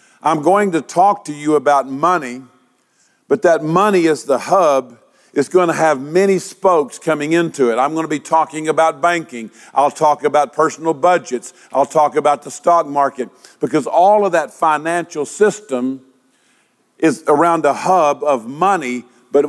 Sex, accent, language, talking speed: male, American, English, 160 wpm